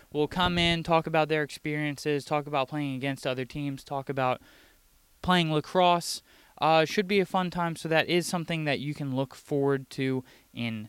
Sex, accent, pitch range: male, American, 135-175 Hz